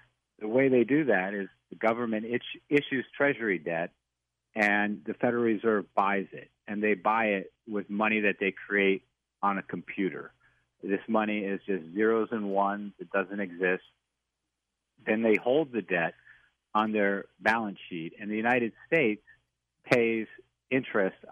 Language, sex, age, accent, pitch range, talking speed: English, male, 50-69, American, 95-115 Hz, 150 wpm